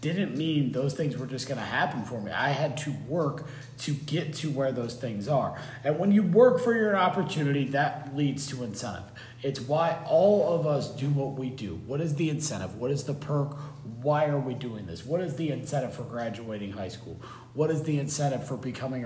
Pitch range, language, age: 125-155 Hz, English, 40-59